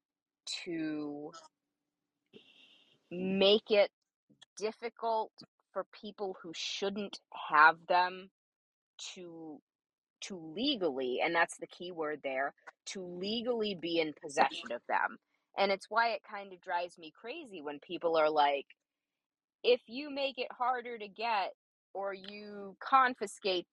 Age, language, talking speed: 20-39, English, 125 wpm